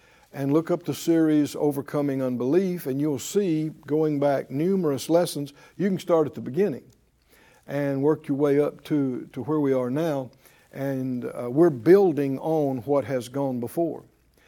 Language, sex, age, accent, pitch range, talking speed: English, male, 60-79, American, 140-175 Hz, 165 wpm